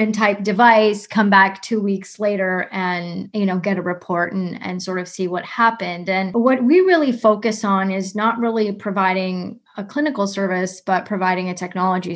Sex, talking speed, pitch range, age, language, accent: female, 185 wpm, 190-225 Hz, 30-49, English, American